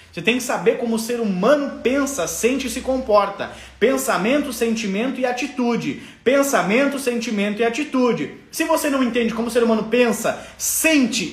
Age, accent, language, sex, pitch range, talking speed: 20-39, Brazilian, Portuguese, male, 240-320 Hz, 165 wpm